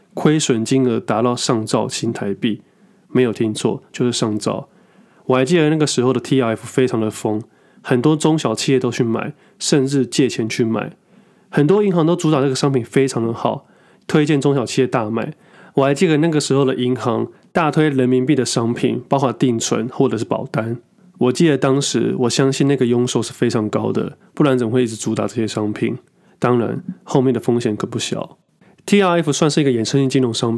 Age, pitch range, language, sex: 20-39, 120-155 Hz, Chinese, male